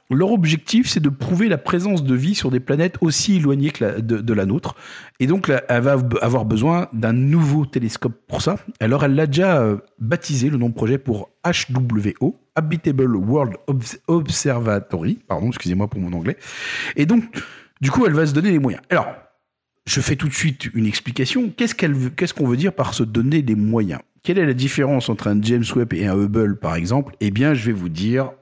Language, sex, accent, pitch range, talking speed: French, male, French, 105-145 Hz, 210 wpm